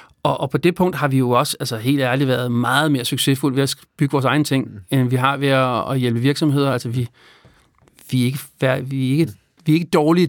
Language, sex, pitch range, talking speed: Danish, male, 135-160 Hz, 235 wpm